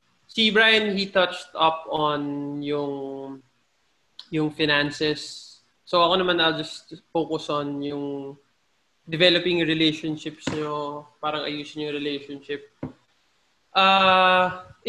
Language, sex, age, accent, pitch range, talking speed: English, male, 20-39, Filipino, 145-175 Hz, 100 wpm